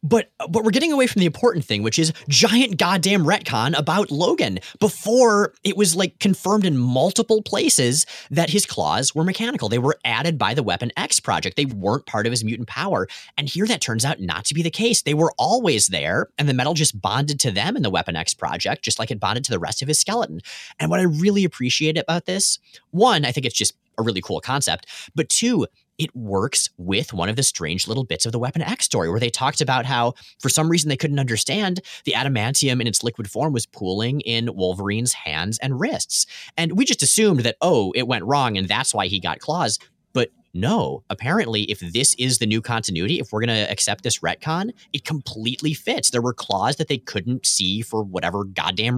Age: 30-49